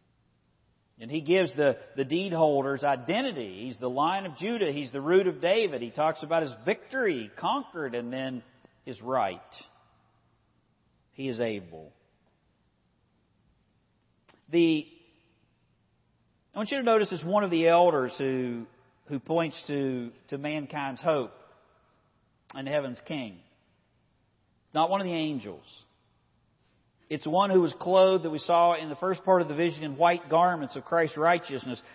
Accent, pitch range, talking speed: American, 130-170 Hz, 145 wpm